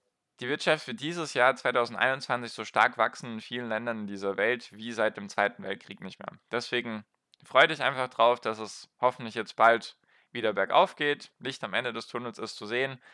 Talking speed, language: 195 wpm, German